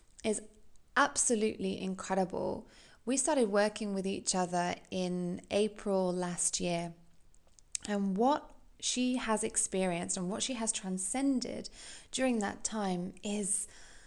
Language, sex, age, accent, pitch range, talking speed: English, female, 20-39, British, 185-235 Hz, 115 wpm